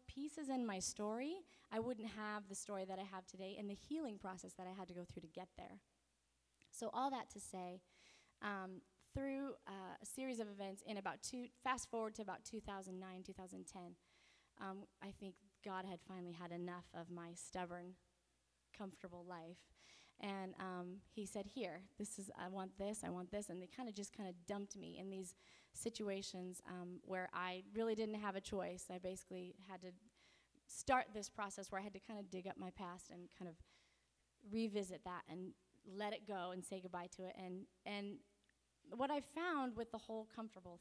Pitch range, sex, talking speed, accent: 185-225 Hz, female, 195 wpm, American